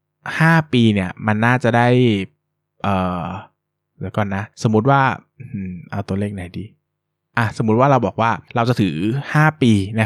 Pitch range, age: 100-125 Hz, 20-39